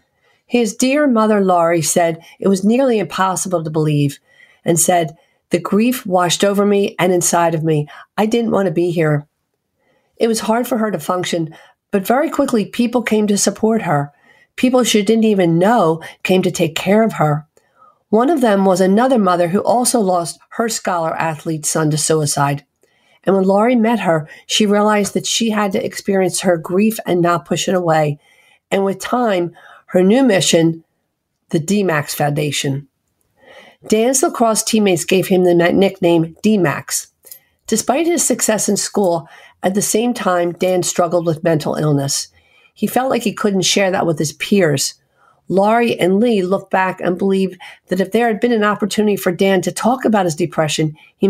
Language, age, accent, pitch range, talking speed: English, 50-69, American, 170-220 Hz, 175 wpm